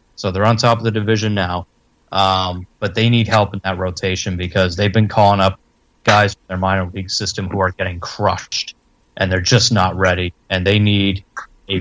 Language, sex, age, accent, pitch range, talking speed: English, male, 30-49, American, 95-110 Hz, 205 wpm